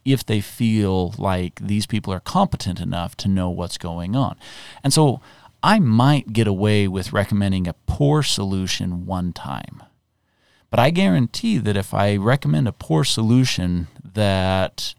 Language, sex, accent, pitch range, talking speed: English, male, American, 95-125 Hz, 150 wpm